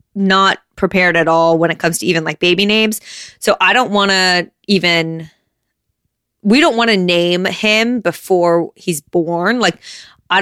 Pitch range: 175-220 Hz